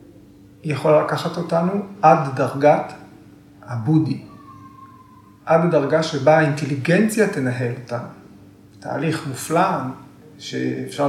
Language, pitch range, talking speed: Hebrew, 125-160 Hz, 80 wpm